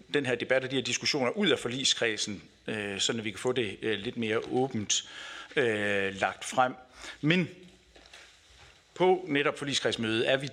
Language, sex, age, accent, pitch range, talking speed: Danish, male, 60-79, native, 105-130 Hz, 150 wpm